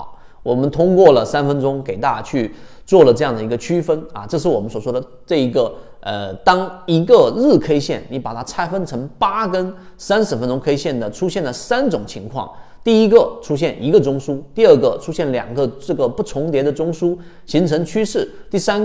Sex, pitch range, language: male, 115-165 Hz, Chinese